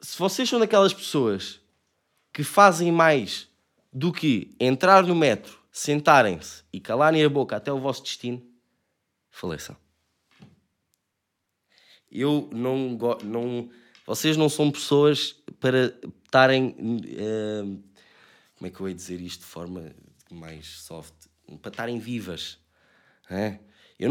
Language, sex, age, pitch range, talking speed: Portuguese, male, 20-39, 110-185 Hz, 120 wpm